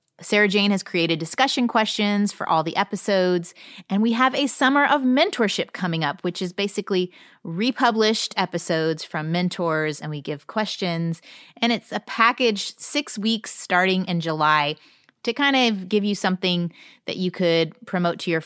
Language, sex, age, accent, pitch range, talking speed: English, female, 30-49, American, 165-220 Hz, 165 wpm